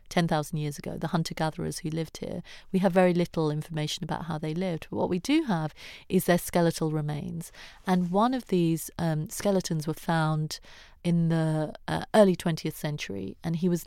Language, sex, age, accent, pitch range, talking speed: English, female, 30-49, British, 160-185 Hz, 180 wpm